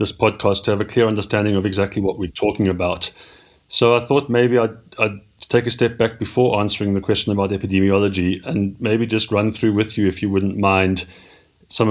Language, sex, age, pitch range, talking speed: English, male, 30-49, 95-115 Hz, 205 wpm